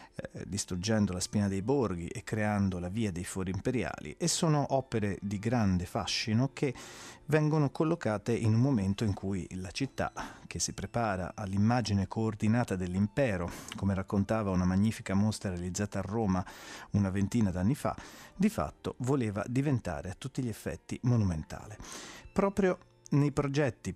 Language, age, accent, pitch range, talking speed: Italian, 40-59, native, 95-125 Hz, 145 wpm